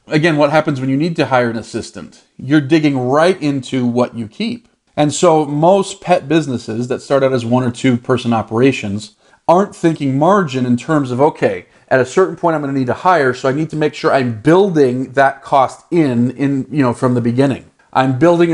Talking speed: 215 wpm